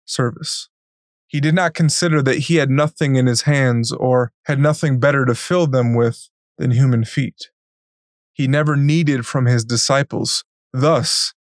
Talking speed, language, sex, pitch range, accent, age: 155 wpm, English, male, 125-150 Hz, American, 20-39